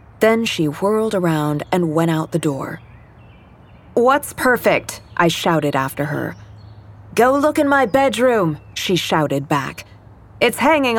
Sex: female